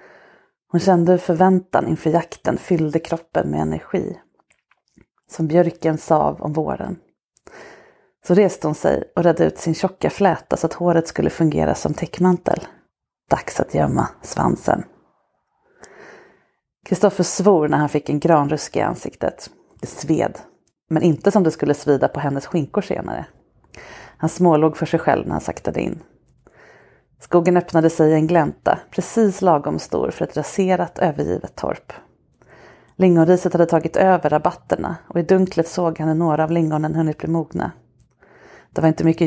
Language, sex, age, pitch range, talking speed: English, female, 30-49, 160-180 Hz, 155 wpm